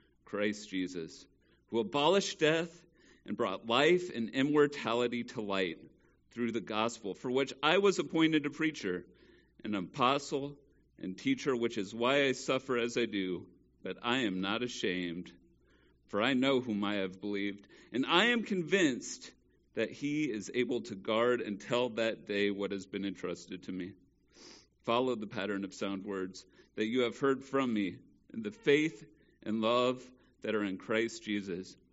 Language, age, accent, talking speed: English, 40-59, American, 165 wpm